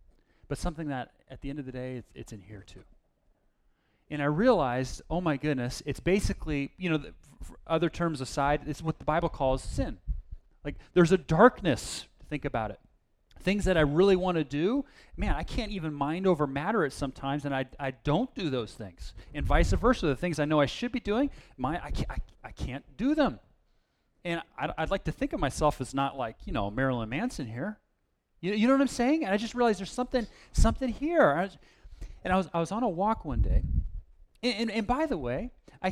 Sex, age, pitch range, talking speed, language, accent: male, 30-49, 130-190 Hz, 220 wpm, English, American